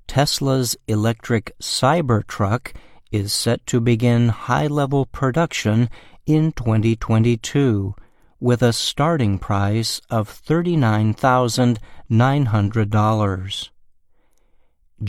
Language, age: Chinese, 50-69